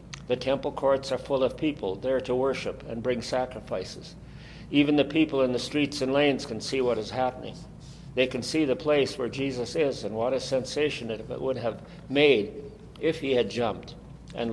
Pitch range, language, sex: 120-150 Hz, English, male